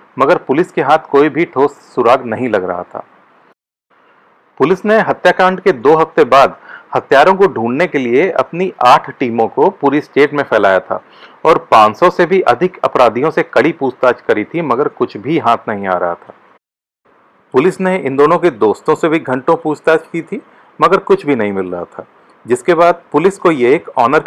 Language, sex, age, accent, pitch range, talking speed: English, male, 40-59, Indian, 140-180 Hz, 150 wpm